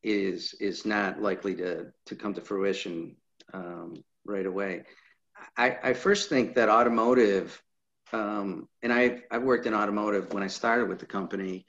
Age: 50-69